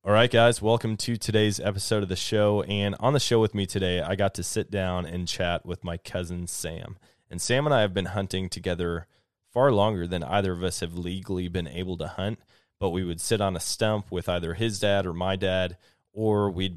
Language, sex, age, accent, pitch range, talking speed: English, male, 20-39, American, 90-105 Hz, 230 wpm